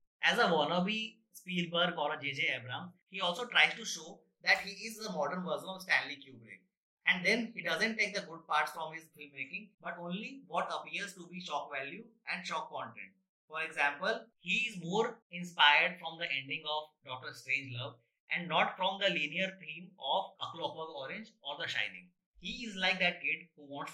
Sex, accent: male, Indian